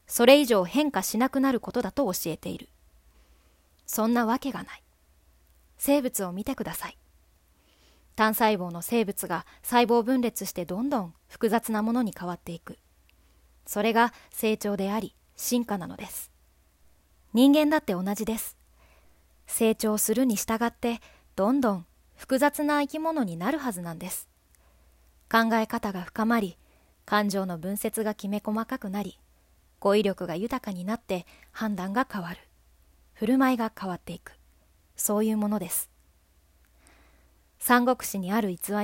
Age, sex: 20-39, female